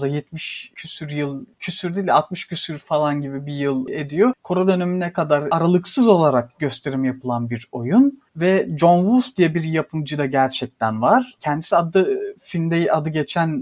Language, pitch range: Turkish, 145-195 Hz